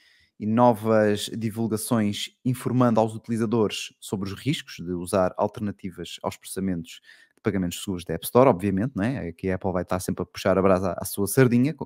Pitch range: 105-130 Hz